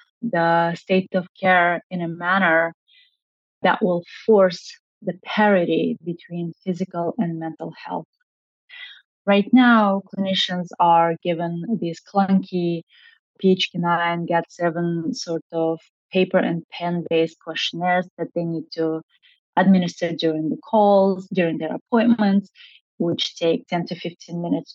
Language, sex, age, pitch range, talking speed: English, female, 20-39, 170-210 Hz, 115 wpm